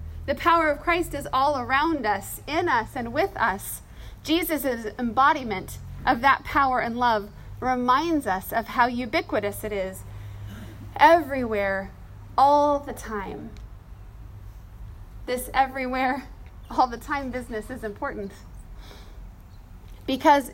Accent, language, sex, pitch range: American, English, female, 185-280 Hz